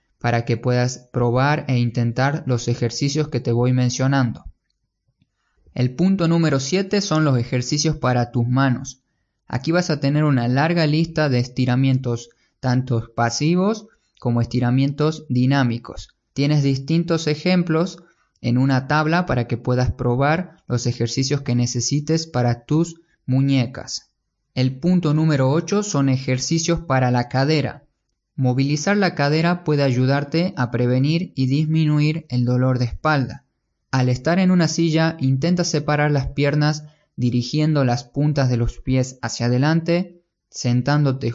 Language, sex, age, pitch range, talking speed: Spanish, male, 20-39, 125-155 Hz, 135 wpm